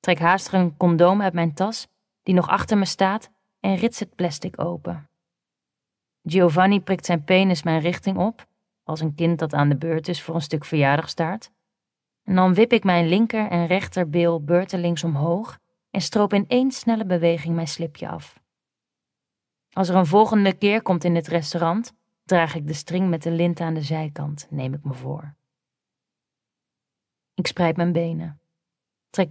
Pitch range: 165-195 Hz